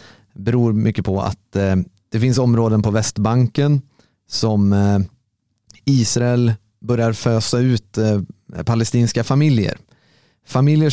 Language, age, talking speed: Swedish, 30-49, 115 wpm